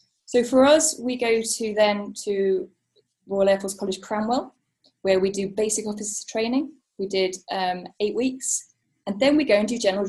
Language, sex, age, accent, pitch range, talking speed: English, female, 20-39, British, 195-250 Hz, 185 wpm